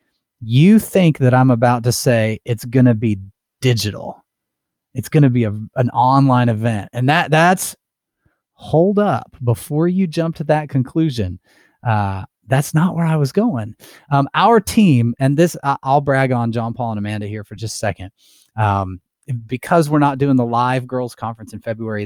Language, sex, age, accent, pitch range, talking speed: English, male, 30-49, American, 115-145 Hz, 180 wpm